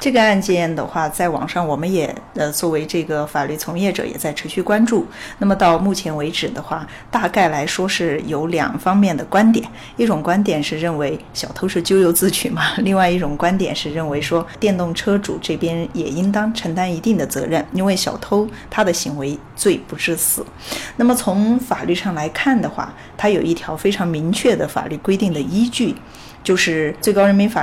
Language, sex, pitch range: Chinese, female, 160-215 Hz